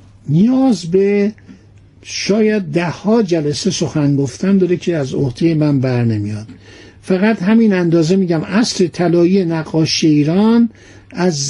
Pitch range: 160-210 Hz